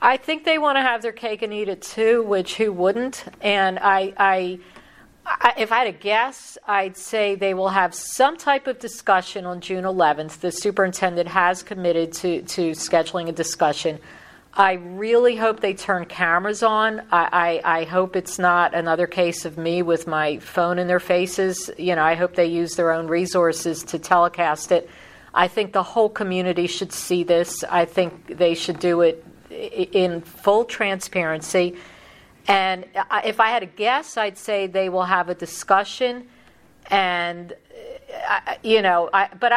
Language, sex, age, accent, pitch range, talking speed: English, female, 50-69, American, 175-215 Hz, 175 wpm